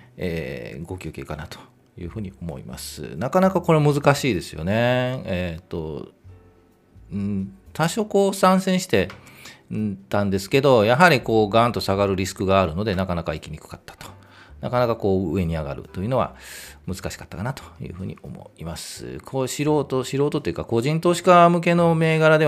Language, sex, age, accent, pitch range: Japanese, male, 40-59, native, 90-135 Hz